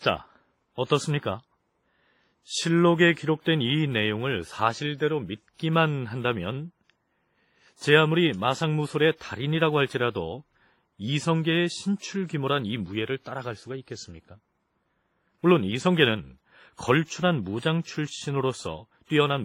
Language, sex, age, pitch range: Korean, male, 40-59, 105-160 Hz